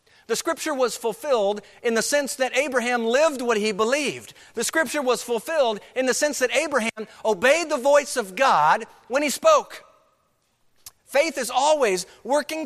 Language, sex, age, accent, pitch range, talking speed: English, male, 50-69, American, 170-275 Hz, 160 wpm